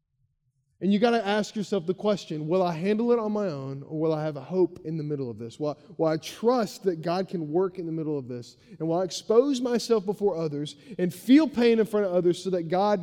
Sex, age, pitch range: male, 20-39, 145-195 Hz